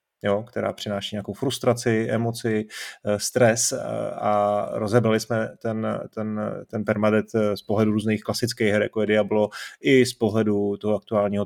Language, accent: Czech, native